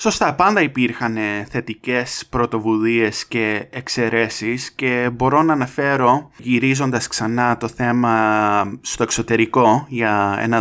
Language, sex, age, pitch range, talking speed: English, male, 20-39, 115-150 Hz, 110 wpm